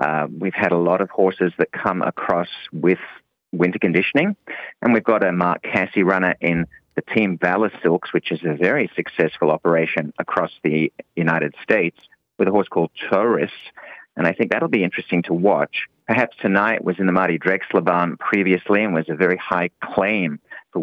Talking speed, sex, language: 180 wpm, male, English